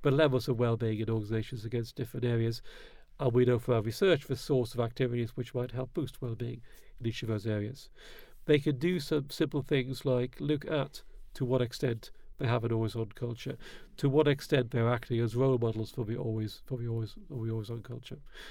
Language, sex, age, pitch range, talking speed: English, male, 50-69, 120-145 Hz, 210 wpm